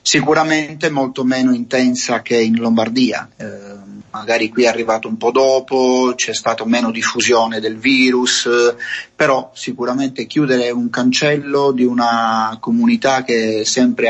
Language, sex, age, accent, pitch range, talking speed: Italian, male, 30-49, native, 110-130 Hz, 135 wpm